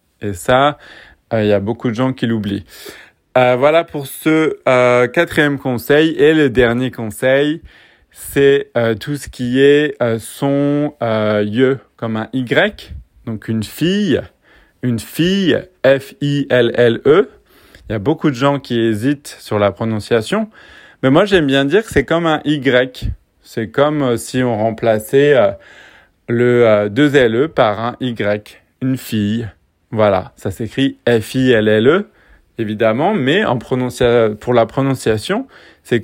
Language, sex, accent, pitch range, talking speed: French, male, French, 115-140 Hz, 165 wpm